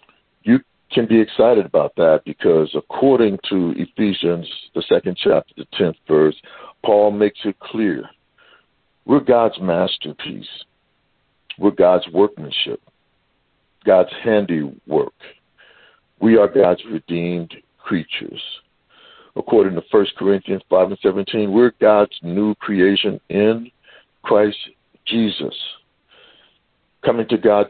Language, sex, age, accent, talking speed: English, male, 60-79, American, 105 wpm